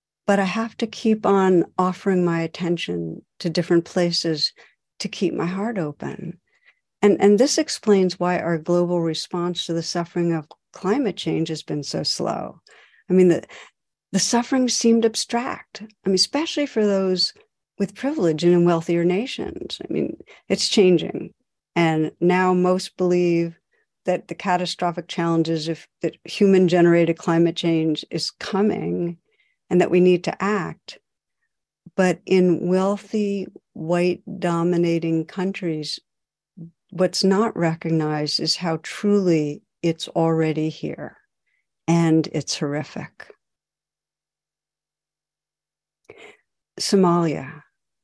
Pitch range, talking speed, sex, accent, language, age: 165-195 Hz, 120 wpm, female, American, English, 50-69